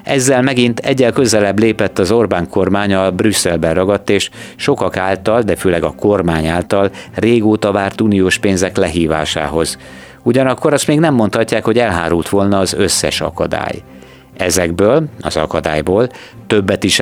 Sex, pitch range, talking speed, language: male, 85-110 Hz, 140 wpm, Hungarian